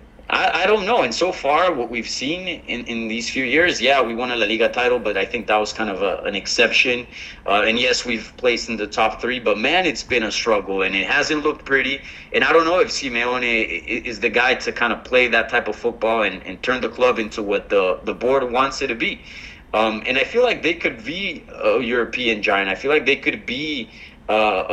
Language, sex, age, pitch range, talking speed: English, male, 30-49, 110-150 Hz, 240 wpm